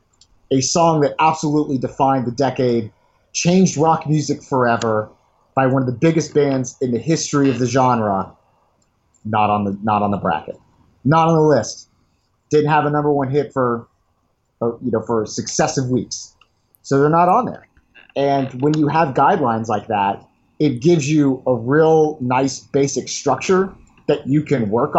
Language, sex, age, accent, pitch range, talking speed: English, male, 30-49, American, 115-150 Hz, 160 wpm